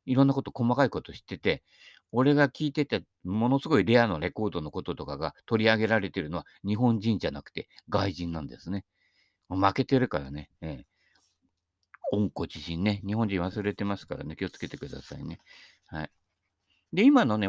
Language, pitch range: Japanese, 95-135 Hz